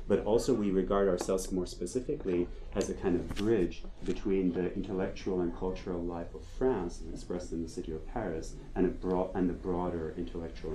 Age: 30-49